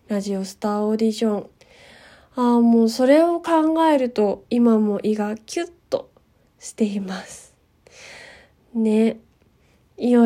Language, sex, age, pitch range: Japanese, female, 20-39, 220-275 Hz